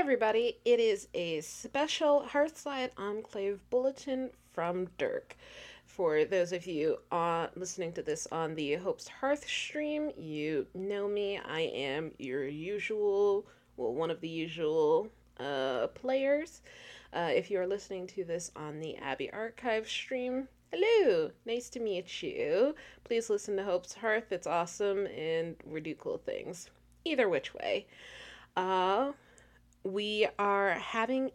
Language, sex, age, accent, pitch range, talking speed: English, female, 20-39, American, 180-290 Hz, 140 wpm